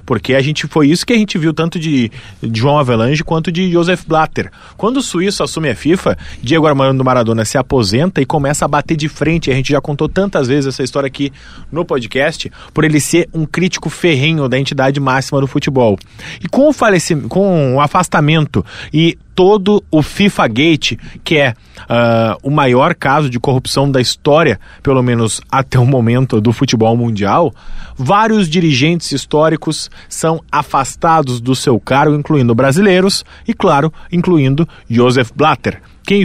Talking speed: 165 wpm